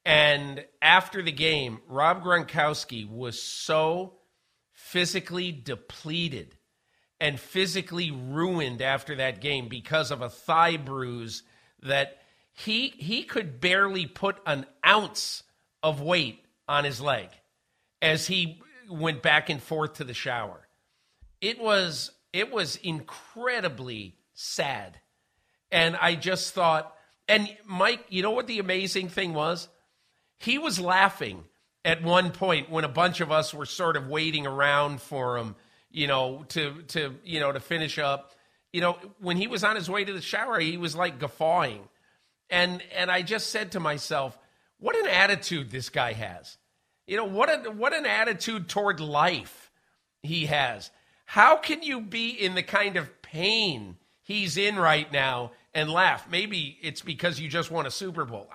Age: 50-69